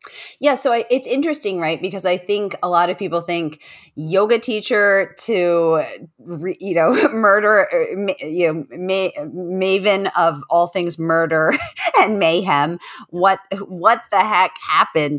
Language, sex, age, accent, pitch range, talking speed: English, female, 30-49, American, 150-200 Hz, 140 wpm